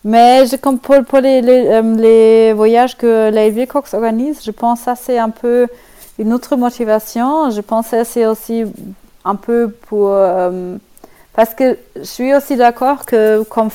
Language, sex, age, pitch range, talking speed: French, female, 40-59, 205-240 Hz, 170 wpm